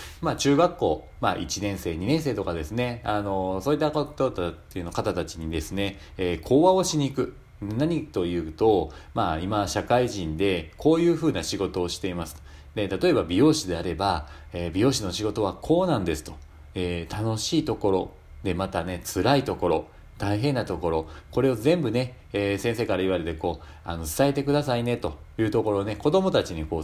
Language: Japanese